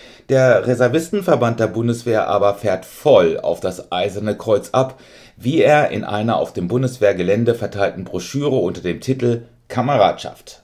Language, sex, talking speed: German, male, 140 wpm